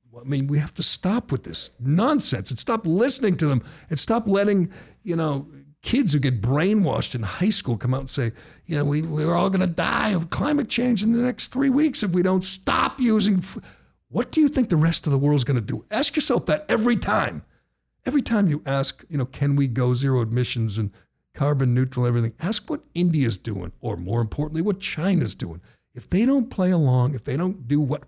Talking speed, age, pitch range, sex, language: 220 wpm, 50-69, 130-195 Hz, male, English